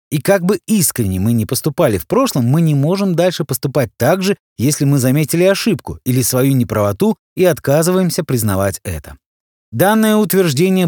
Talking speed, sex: 160 wpm, male